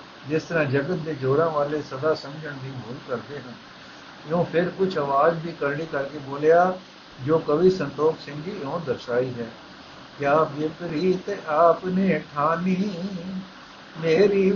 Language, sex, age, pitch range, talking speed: Punjabi, male, 60-79, 160-195 Hz, 135 wpm